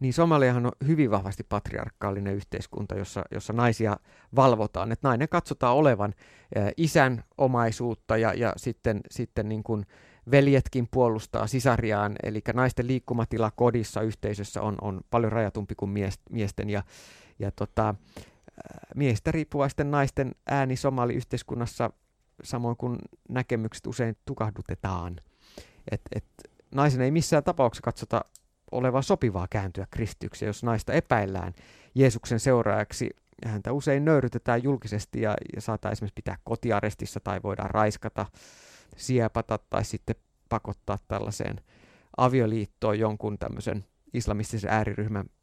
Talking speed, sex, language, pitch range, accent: 120 wpm, male, Finnish, 105-130 Hz, native